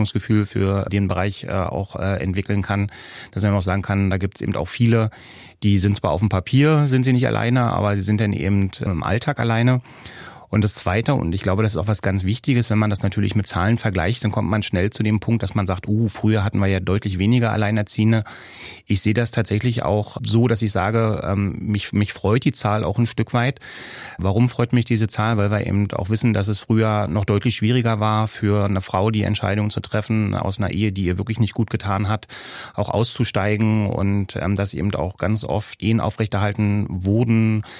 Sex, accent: male, German